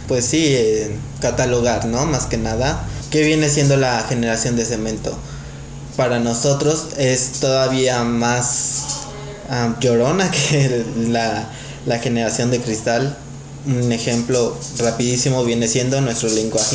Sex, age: male, 20-39